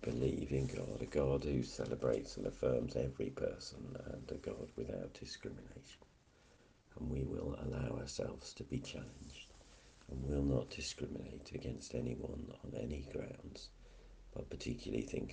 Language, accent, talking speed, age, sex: English, British, 140 wpm, 60-79, male